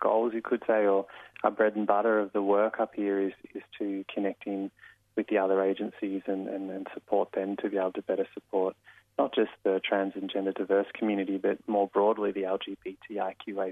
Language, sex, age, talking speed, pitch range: English, male, 20-39, 205 wpm, 100-110 Hz